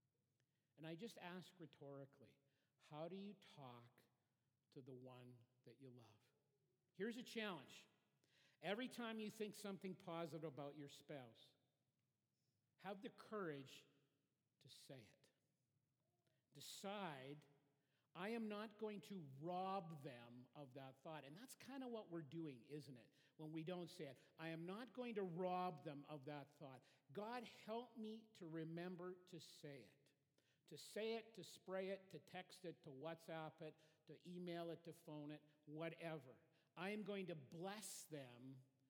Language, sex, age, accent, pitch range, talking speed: English, male, 50-69, American, 140-185 Hz, 155 wpm